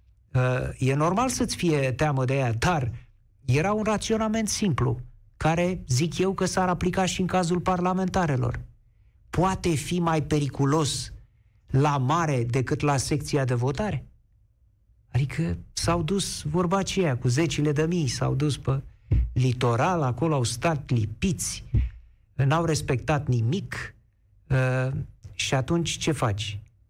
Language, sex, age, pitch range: Romanian, male, 50-69, 120-160 Hz